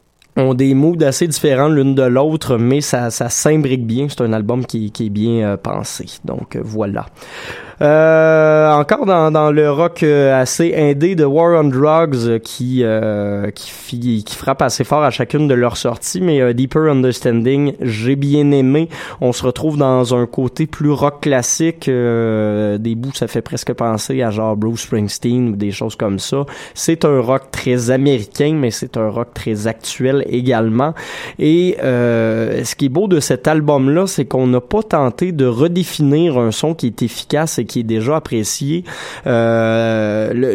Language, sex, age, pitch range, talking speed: French, male, 20-39, 120-155 Hz, 180 wpm